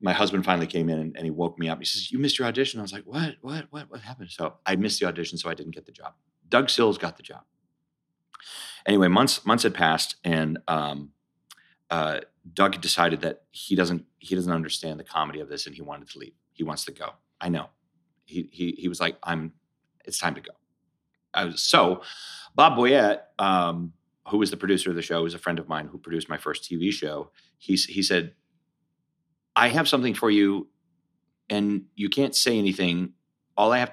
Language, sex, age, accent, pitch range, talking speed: English, male, 30-49, American, 85-105 Hz, 215 wpm